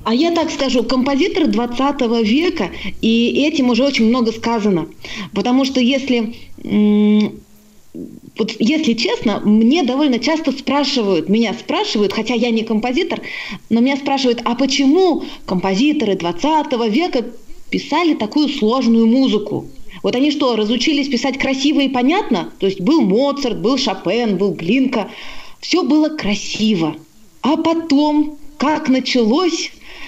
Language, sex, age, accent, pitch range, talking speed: Russian, female, 30-49, native, 215-290 Hz, 130 wpm